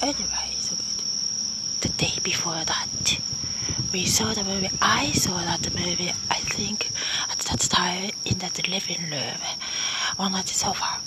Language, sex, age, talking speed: English, female, 30-49, 140 wpm